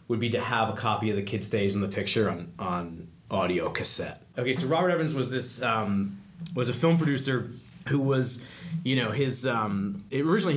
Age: 30-49